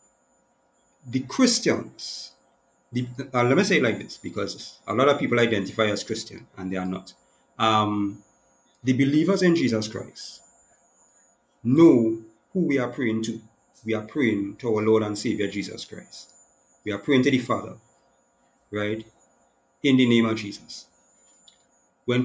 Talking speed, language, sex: 150 wpm, English, male